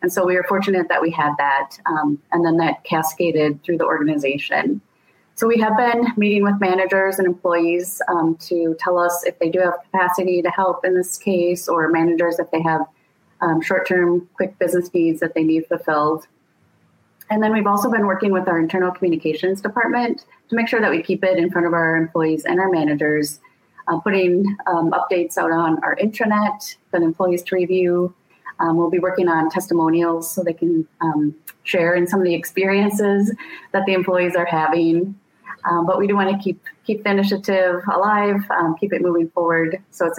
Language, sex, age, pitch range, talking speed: English, female, 30-49, 165-195 Hz, 195 wpm